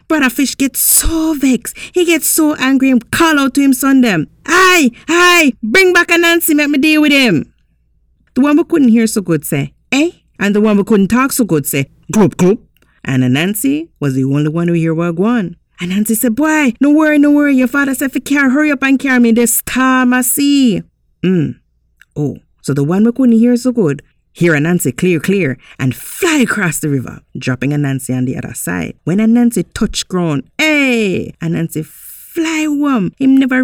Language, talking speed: English, 205 wpm